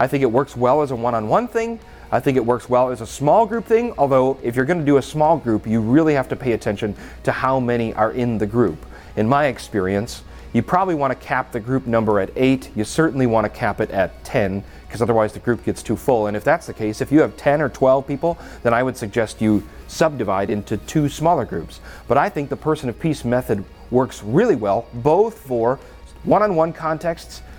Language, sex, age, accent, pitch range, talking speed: English, male, 30-49, American, 110-170 Hz, 230 wpm